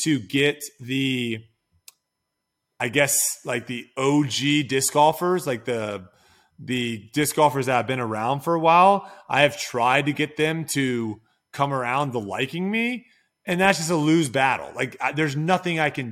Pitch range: 125-150 Hz